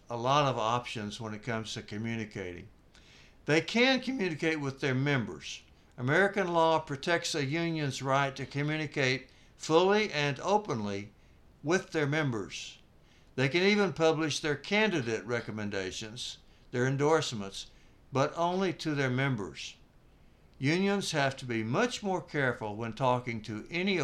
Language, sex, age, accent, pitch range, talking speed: English, male, 60-79, American, 110-160 Hz, 135 wpm